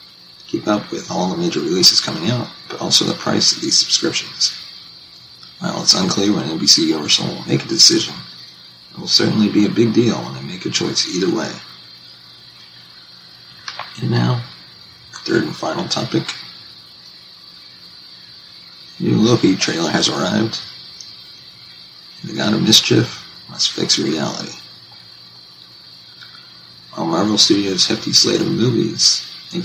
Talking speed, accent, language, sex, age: 140 wpm, American, English, male, 40-59